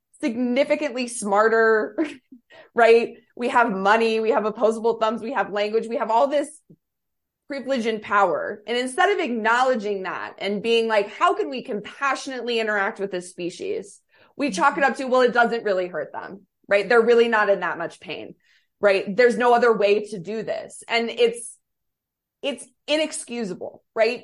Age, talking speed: 20-39, 170 wpm